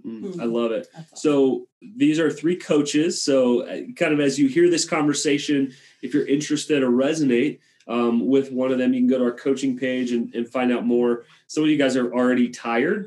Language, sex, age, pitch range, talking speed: English, male, 30-49, 125-175 Hz, 210 wpm